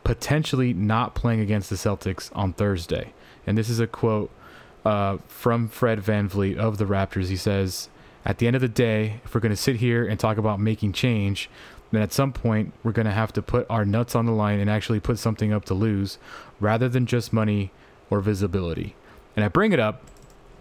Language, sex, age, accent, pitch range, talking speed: English, male, 20-39, American, 105-125 Hz, 215 wpm